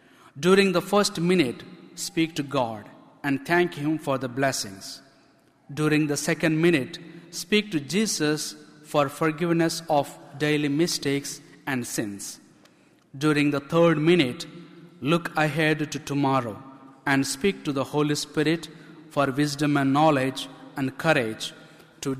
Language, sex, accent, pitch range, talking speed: English, male, Indian, 145-170 Hz, 130 wpm